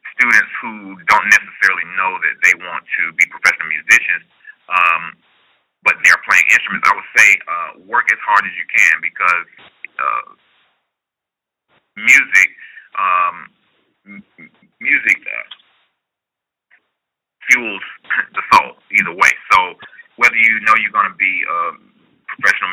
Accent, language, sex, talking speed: American, English, male, 125 wpm